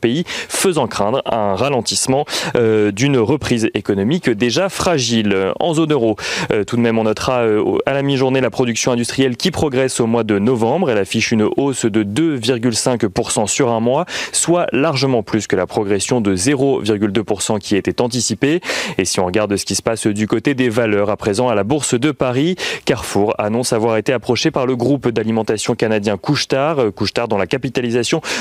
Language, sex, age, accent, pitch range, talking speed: French, male, 30-49, French, 110-140 Hz, 190 wpm